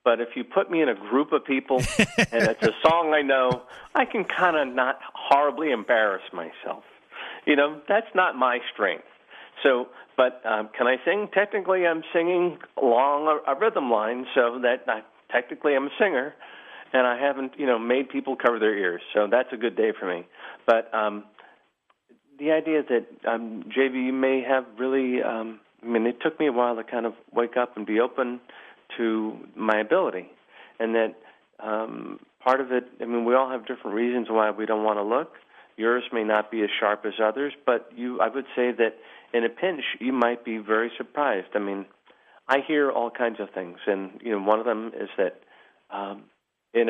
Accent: American